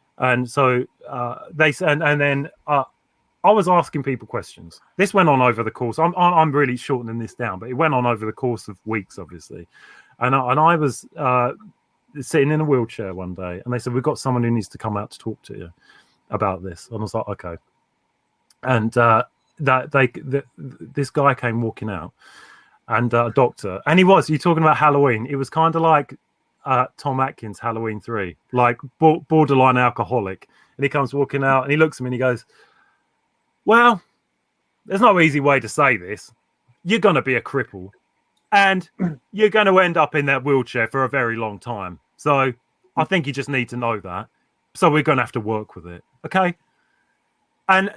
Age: 30-49